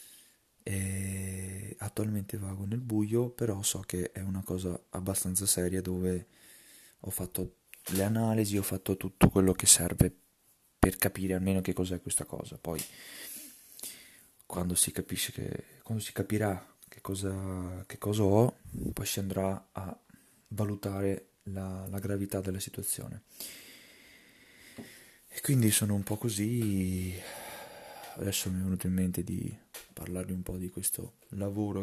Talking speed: 140 wpm